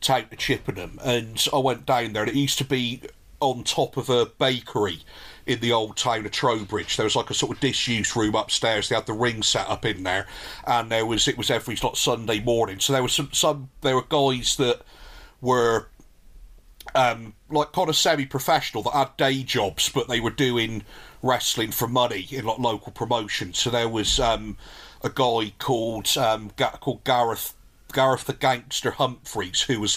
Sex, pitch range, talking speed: male, 110-130 Hz, 195 wpm